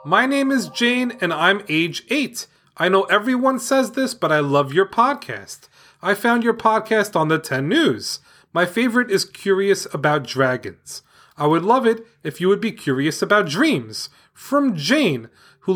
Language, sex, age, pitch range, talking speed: English, male, 30-49, 150-240 Hz, 175 wpm